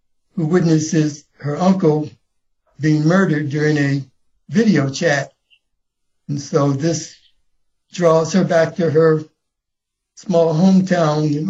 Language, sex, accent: English, male, American